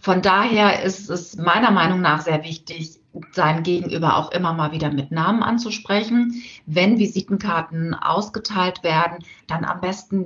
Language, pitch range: German, 160-195 Hz